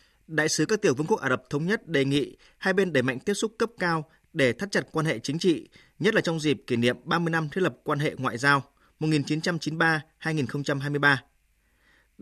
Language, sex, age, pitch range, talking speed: Vietnamese, male, 20-39, 145-185 Hz, 205 wpm